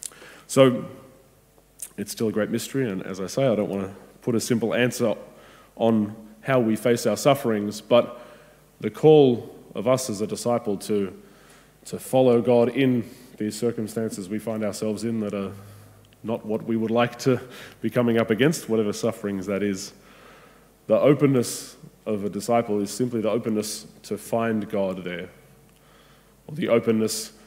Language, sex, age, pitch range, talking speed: English, male, 20-39, 100-115 Hz, 165 wpm